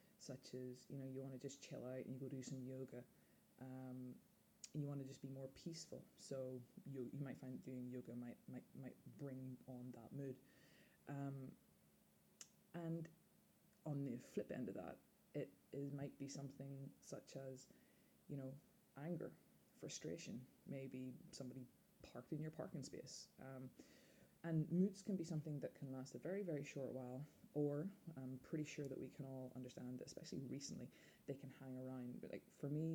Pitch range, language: 130-145 Hz, English